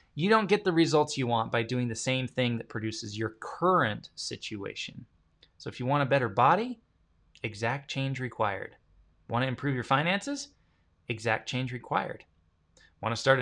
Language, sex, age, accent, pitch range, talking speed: English, male, 20-39, American, 110-165 Hz, 170 wpm